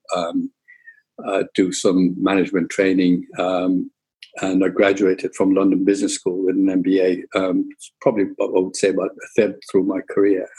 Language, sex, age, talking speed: English, male, 50-69, 165 wpm